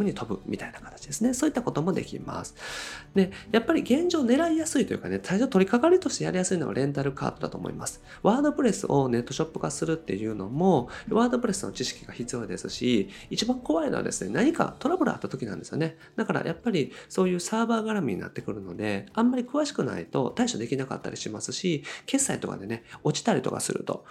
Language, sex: Japanese, male